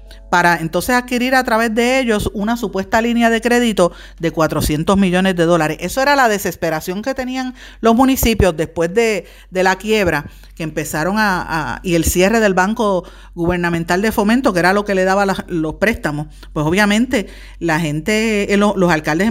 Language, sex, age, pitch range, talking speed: Spanish, female, 50-69, 175-235 Hz, 180 wpm